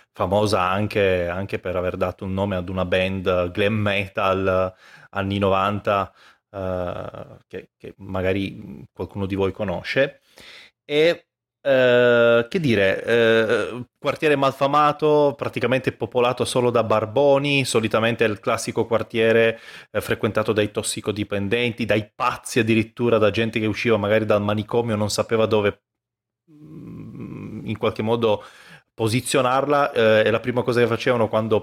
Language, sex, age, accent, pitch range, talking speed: Italian, male, 30-49, native, 100-120 Hz, 120 wpm